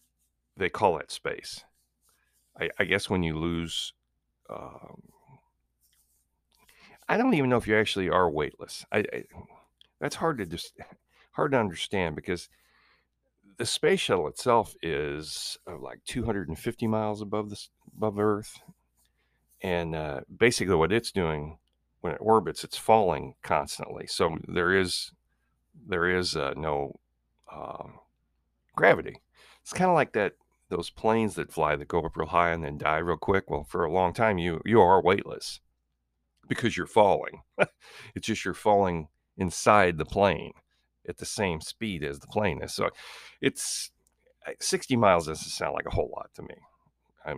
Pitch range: 70-100 Hz